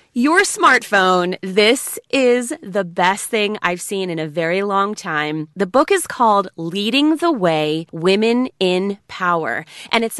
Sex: female